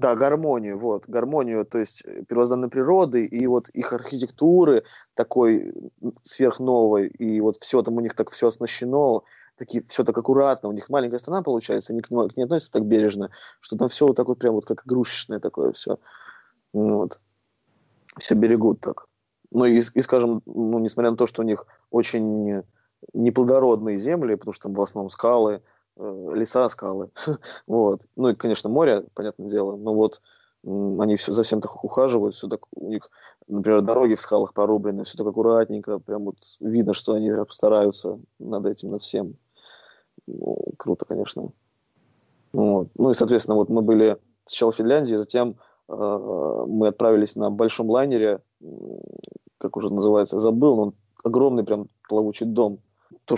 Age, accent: 20-39, native